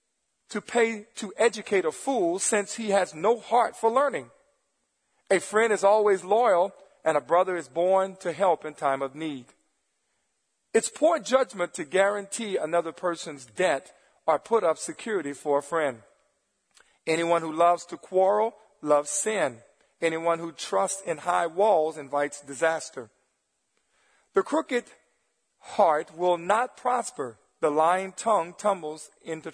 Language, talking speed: English, 140 wpm